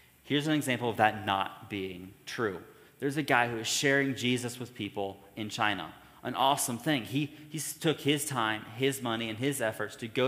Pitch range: 110-145 Hz